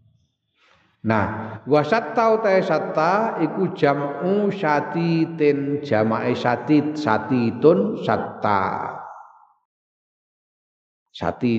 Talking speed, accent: 80 wpm, native